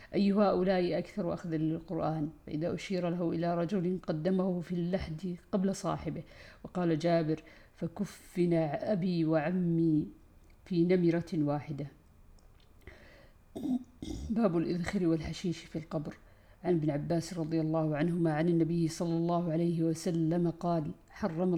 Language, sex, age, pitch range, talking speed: Arabic, female, 50-69, 160-185 Hz, 120 wpm